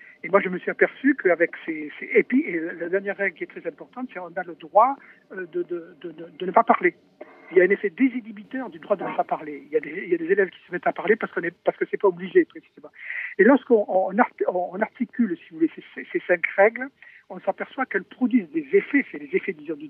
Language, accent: French, French